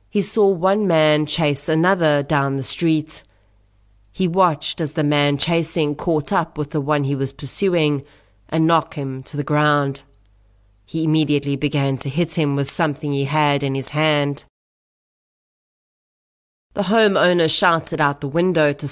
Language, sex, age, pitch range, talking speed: English, female, 30-49, 135-160 Hz, 155 wpm